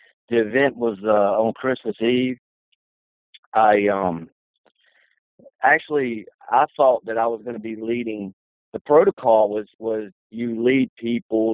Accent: American